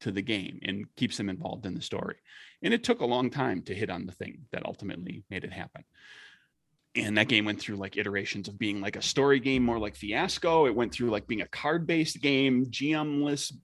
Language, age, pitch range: English, 30-49, 95-130 Hz